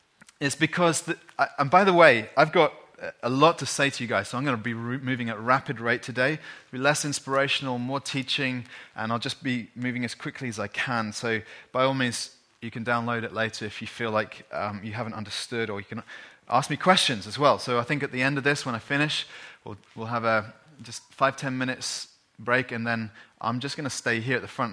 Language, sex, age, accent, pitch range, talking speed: English, male, 30-49, British, 115-145 Hz, 235 wpm